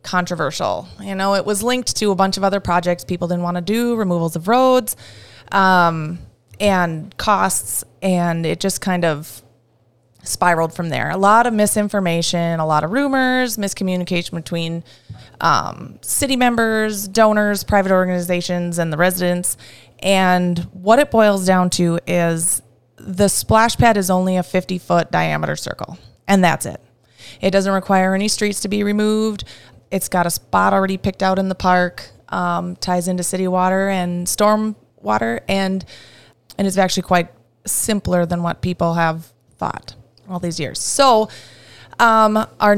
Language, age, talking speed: English, 20-39, 160 wpm